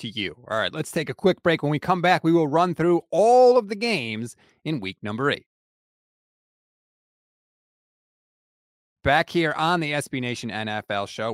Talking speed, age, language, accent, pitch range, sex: 170 wpm, 30-49, English, American, 125-170 Hz, male